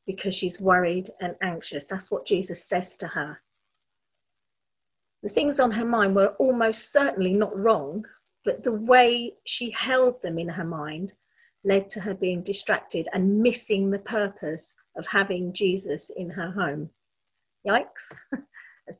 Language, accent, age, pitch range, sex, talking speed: English, British, 40-59, 180-245 Hz, female, 150 wpm